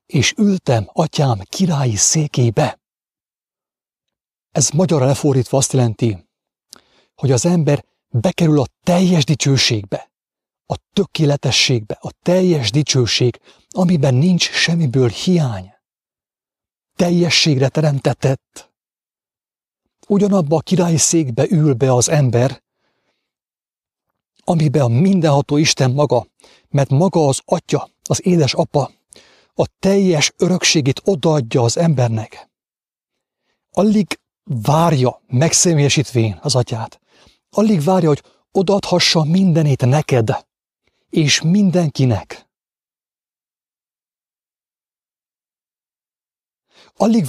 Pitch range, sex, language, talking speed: 130-175 Hz, male, English, 85 wpm